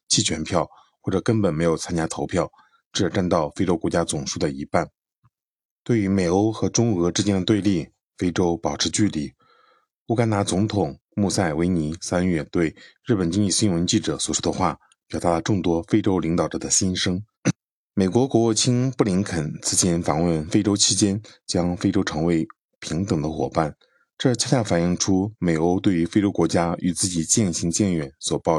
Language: Chinese